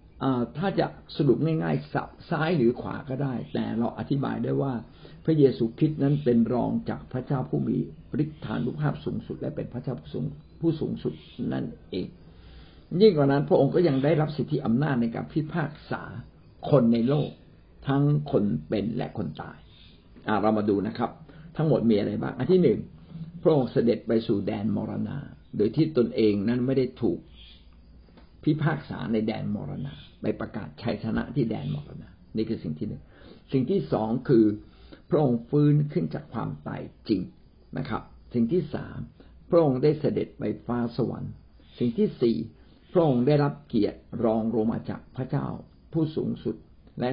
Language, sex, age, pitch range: Thai, male, 60-79, 115-150 Hz